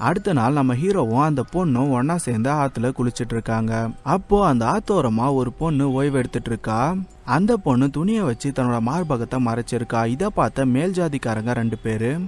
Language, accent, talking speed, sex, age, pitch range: Tamil, native, 145 wpm, male, 30-49, 120-175 Hz